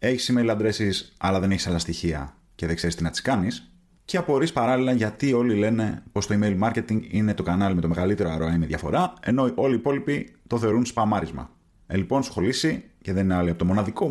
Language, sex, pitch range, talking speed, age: Greek, male, 85-115 Hz, 215 wpm, 30-49